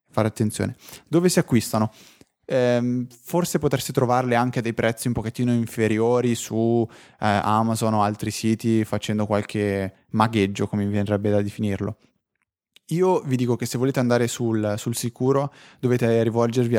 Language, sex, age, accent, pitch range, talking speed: Italian, male, 20-39, native, 110-130 Hz, 150 wpm